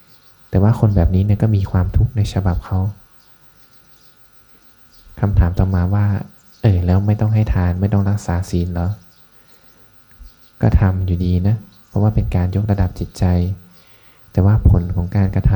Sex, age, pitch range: male, 20-39, 90-105 Hz